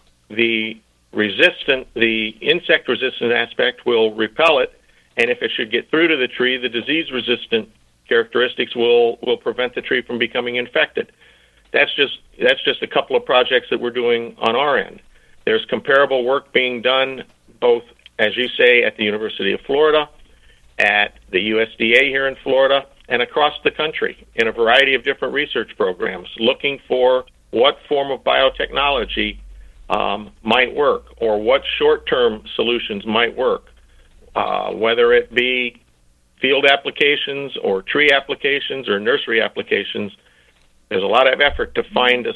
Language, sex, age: English, male, 50-69